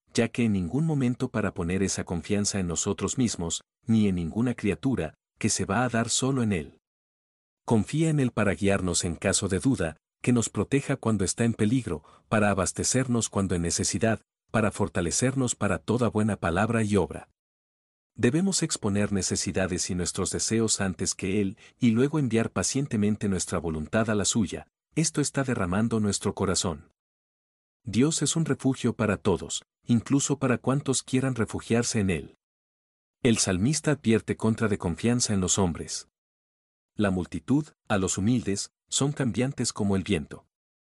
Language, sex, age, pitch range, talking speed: Spanish, male, 50-69, 95-120 Hz, 160 wpm